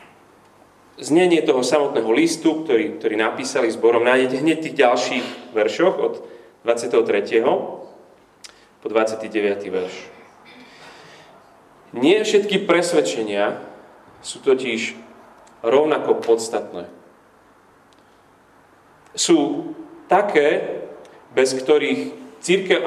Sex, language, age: male, Slovak, 30-49